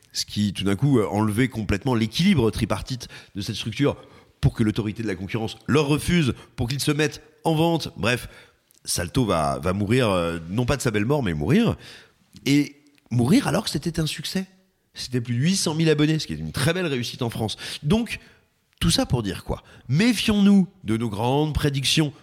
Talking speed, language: 195 wpm, French